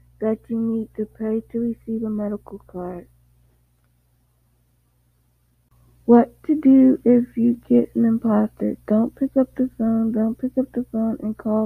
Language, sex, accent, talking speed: English, female, American, 155 wpm